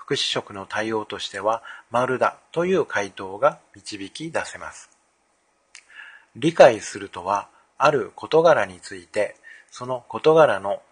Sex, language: male, Japanese